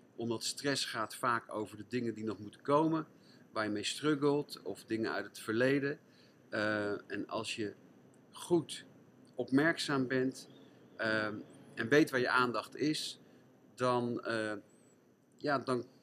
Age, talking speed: 50-69, 130 wpm